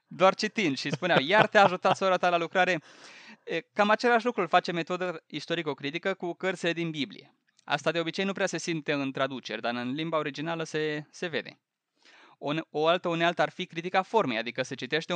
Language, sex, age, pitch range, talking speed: Romanian, male, 20-39, 140-185 Hz, 185 wpm